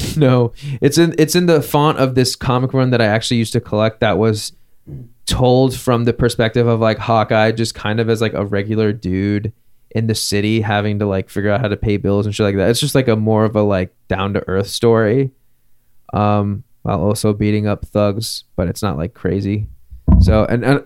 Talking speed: 215 wpm